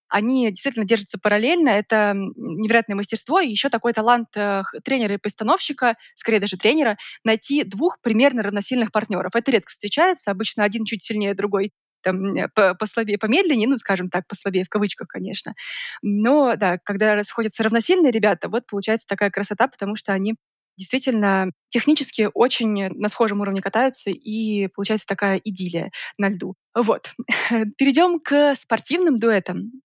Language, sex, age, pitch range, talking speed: Russian, female, 20-39, 205-240 Hz, 145 wpm